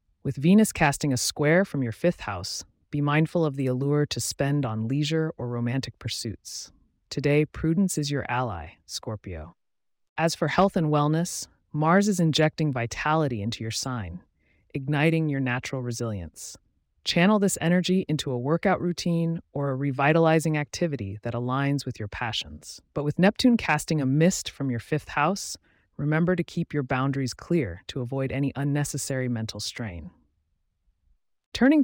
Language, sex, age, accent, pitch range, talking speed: English, female, 30-49, American, 115-160 Hz, 155 wpm